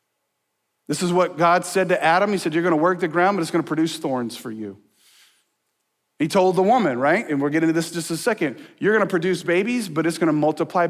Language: English